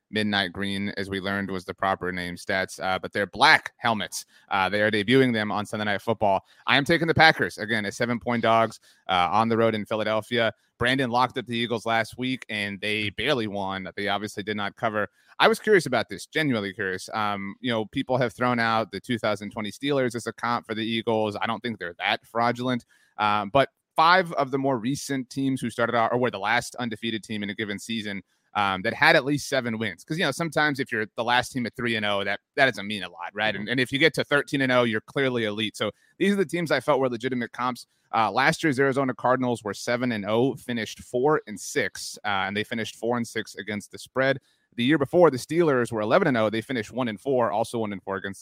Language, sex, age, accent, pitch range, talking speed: English, male, 30-49, American, 105-130 Hz, 240 wpm